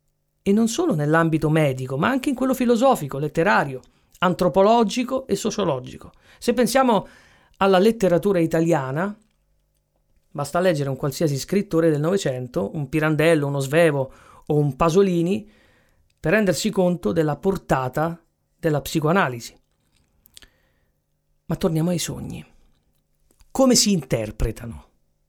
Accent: native